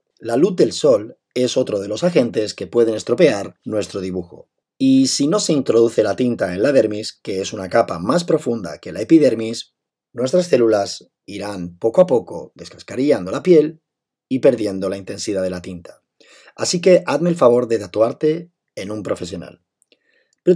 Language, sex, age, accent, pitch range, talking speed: Spanish, male, 30-49, Spanish, 105-145 Hz, 175 wpm